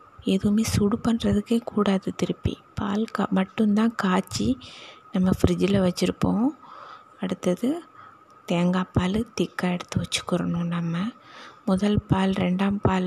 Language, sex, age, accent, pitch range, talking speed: Tamil, female, 20-39, native, 180-235 Hz, 95 wpm